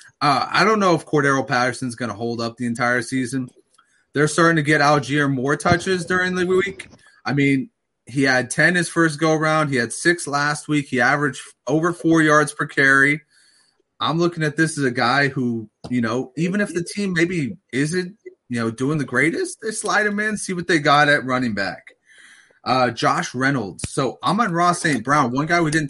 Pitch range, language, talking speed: 125-160 Hz, English, 210 wpm